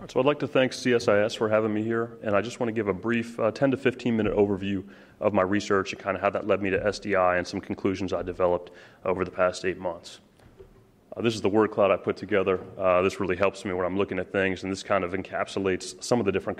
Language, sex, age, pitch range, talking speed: English, male, 30-49, 95-115 Hz, 265 wpm